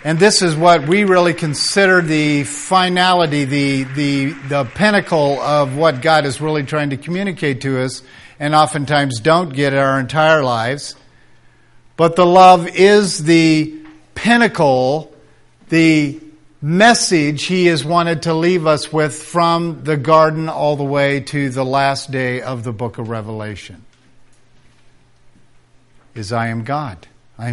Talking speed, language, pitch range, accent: 140 wpm, English, 130-165 Hz, American